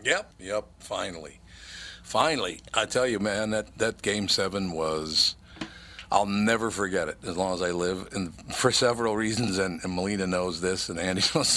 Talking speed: 170 wpm